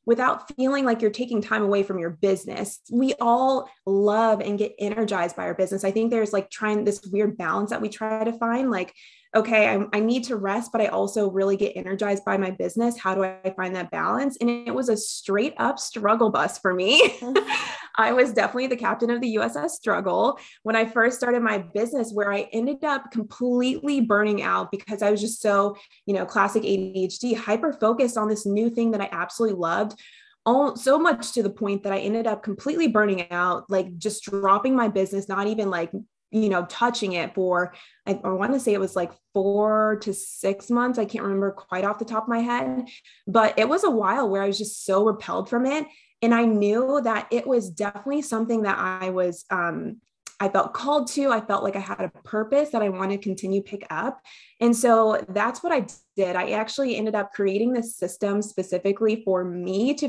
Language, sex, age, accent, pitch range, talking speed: English, female, 20-39, American, 195-235 Hz, 210 wpm